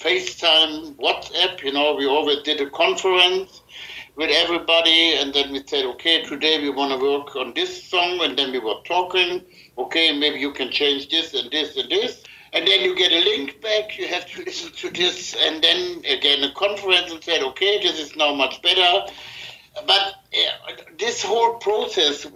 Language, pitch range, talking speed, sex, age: English, 140-185 Hz, 190 wpm, male, 60-79